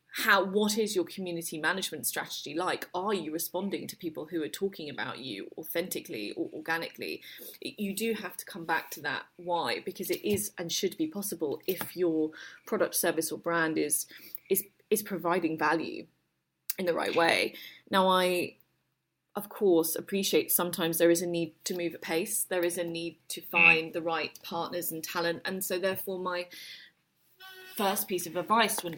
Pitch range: 170-205 Hz